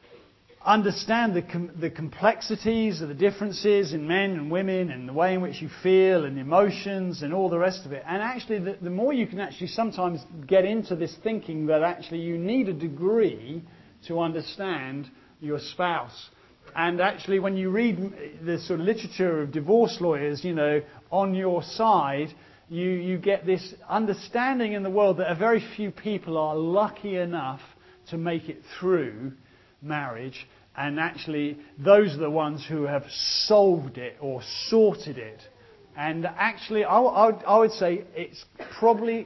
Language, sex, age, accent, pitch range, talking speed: English, male, 40-59, British, 155-200 Hz, 170 wpm